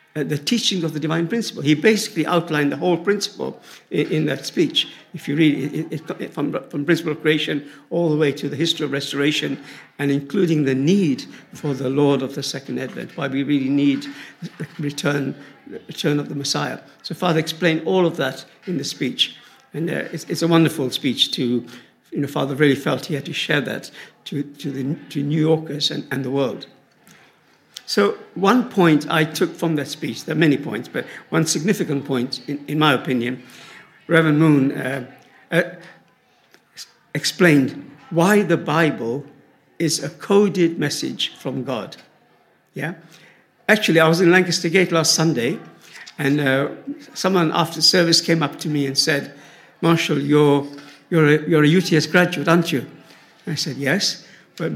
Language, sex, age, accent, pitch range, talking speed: English, male, 60-79, British, 145-175 Hz, 175 wpm